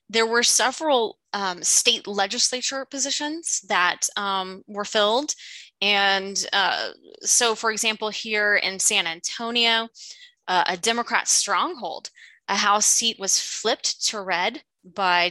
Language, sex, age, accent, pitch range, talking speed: English, female, 20-39, American, 190-240 Hz, 125 wpm